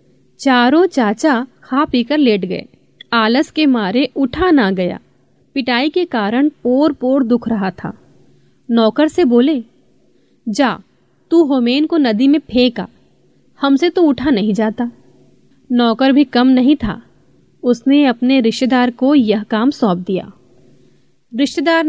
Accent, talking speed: native, 135 wpm